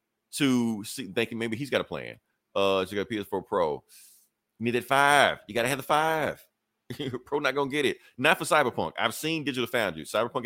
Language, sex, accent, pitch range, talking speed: English, male, American, 105-130 Hz, 205 wpm